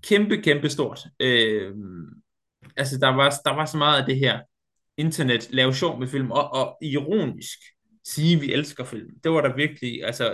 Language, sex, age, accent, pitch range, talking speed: Danish, male, 20-39, native, 120-145 Hz, 175 wpm